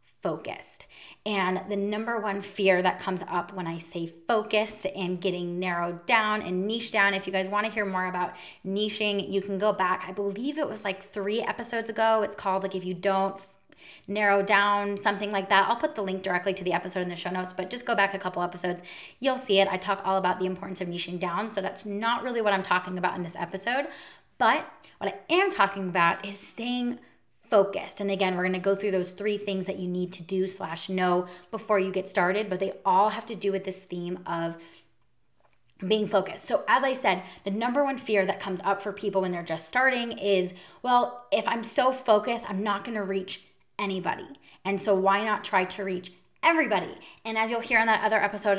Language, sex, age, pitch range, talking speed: English, female, 20-39, 185-215 Hz, 225 wpm